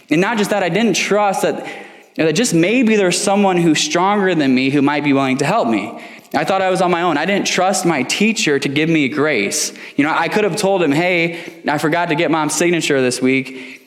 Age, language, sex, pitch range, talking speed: 10-29, English, male, 130-185 Hz, 240 wpm